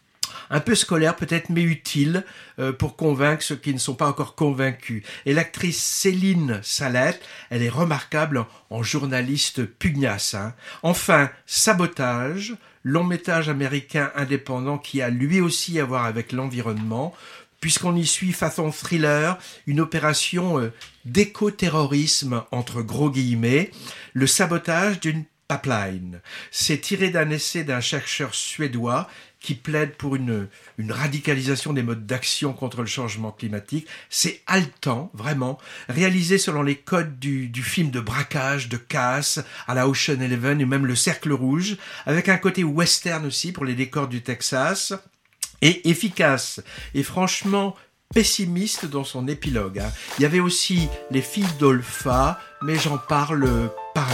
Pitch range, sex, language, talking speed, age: 130-170 Hz, male, French, 145 wpm, 60-79